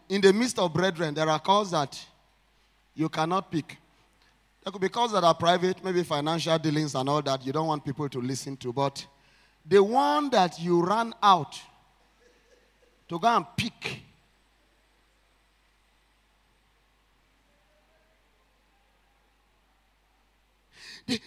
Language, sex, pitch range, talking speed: English, male, 155-230 Hz, 125 wpm